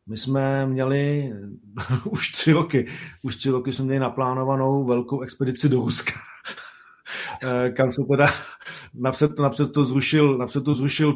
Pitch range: 115-135 Hz